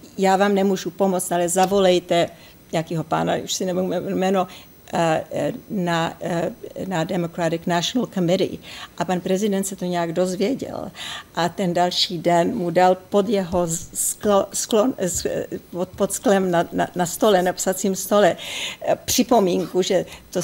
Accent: native